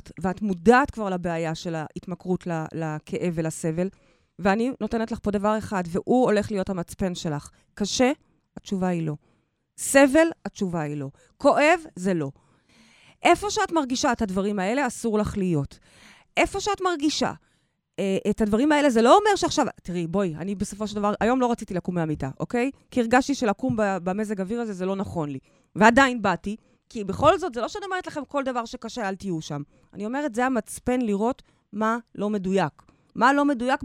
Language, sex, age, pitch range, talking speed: Hebrew, female, 30-49, 185-270 Hz, 175 wpm